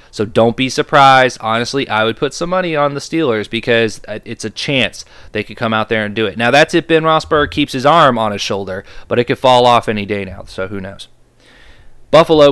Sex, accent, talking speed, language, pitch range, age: male, American, 230 wpm, English, 110-135 Hz, 20-39